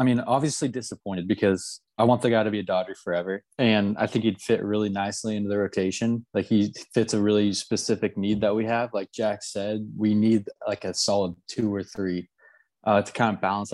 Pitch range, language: 100-125 Hz, English